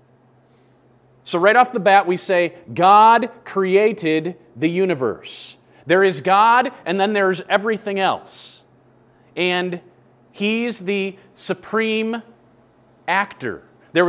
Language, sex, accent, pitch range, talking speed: English, male, American, 165-230 Hz, 105 wpm